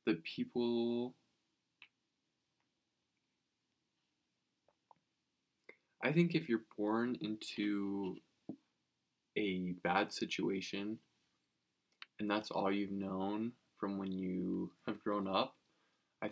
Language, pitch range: English, 95-105 Hz